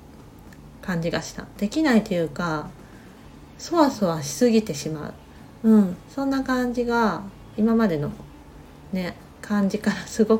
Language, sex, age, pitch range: Japanese, female, 40-59, 180-265 Hz